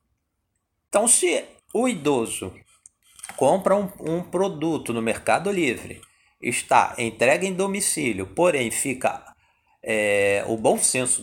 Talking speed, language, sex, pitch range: 110 wpm, Portuguese, male, 110-175 Hz